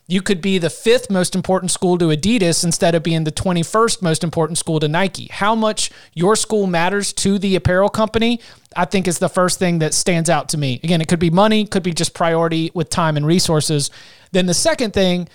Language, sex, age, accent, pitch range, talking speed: English, male, 30-49, American, 160-190 Hz, 225 wpm